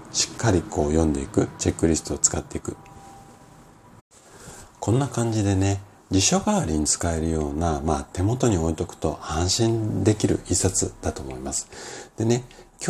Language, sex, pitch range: Japanese, male, 75-100 Hz